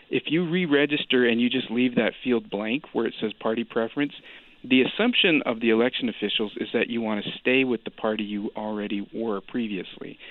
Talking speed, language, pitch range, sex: 200 wpm, German, 105-130 Hz, male